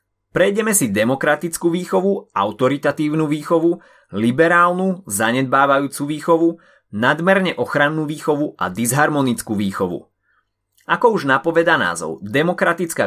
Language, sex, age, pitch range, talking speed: Slovak, male, 30-49, 115-165 Hz, 90 wpm